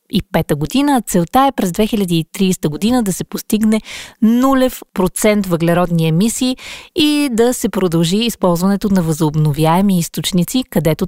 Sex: female